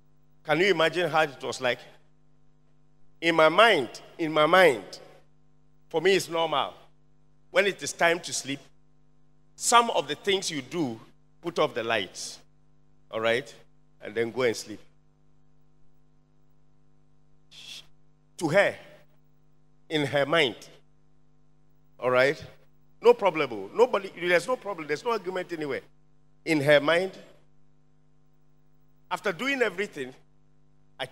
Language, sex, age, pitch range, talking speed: English, male, 50-69, 140-230 Hz, 125 wpm